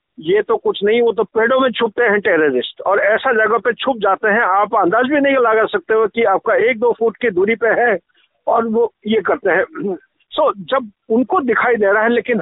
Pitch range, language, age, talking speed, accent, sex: 200-285 Hz, Hindi, 50-69, 230 wpm, native, male